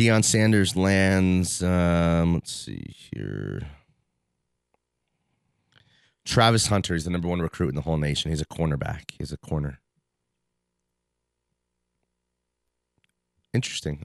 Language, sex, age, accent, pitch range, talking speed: English, male, 30-49, American, 75-100 Hz, 105 wpm